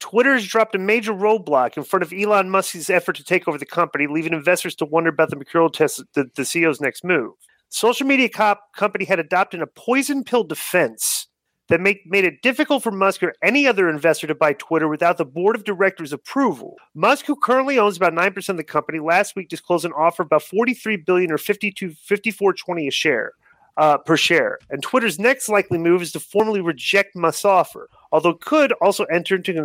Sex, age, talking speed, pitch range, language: male, 30-49, 195 wpm, 165-220 Hz, English